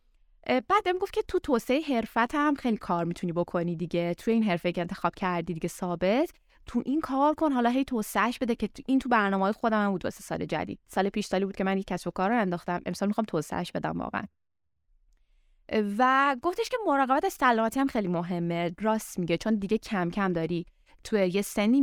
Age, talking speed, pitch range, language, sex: 20-39, 200 wpm, 175-230 Hz, Persian, female